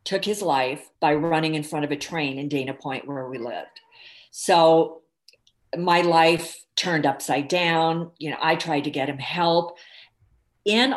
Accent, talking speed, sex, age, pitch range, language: American, 170 wpm, female, 50-69, 145-185 Hz, English